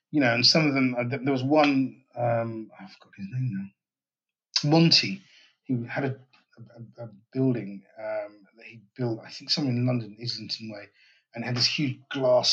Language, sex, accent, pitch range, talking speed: English, male, British, 120-150 Hz, 180 wpm